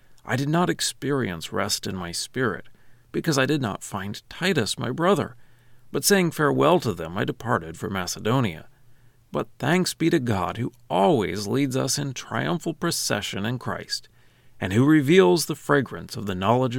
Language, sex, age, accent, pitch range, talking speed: English, male, 40-59, American, 110-145 Hz, 170 wpm